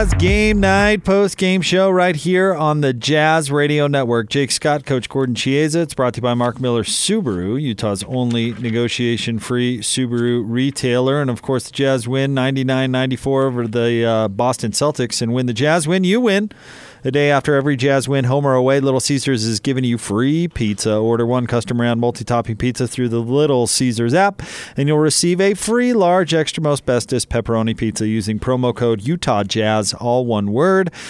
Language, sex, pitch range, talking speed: English, male, 120-155 Hz, 180 wpm